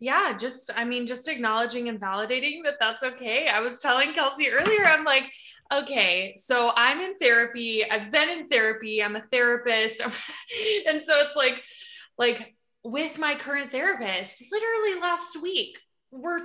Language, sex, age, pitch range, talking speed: English, female, 20-39, 225-290 Hz, 155 wpm